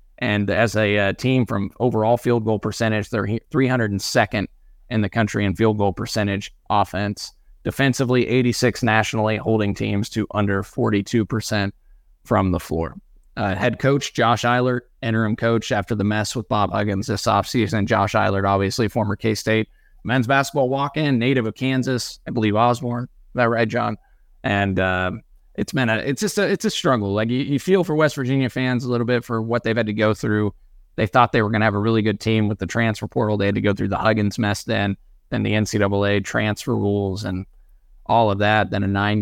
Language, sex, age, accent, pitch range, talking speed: English, male, 20-39, American, 100-125 Hz, 195 wpm